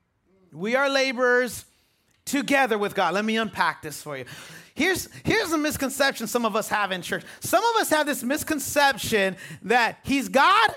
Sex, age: male, 30-49